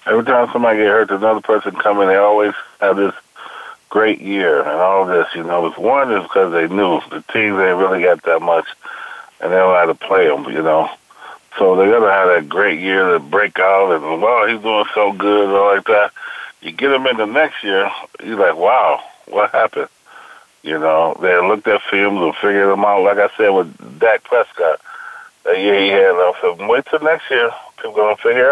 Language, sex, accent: English, male, American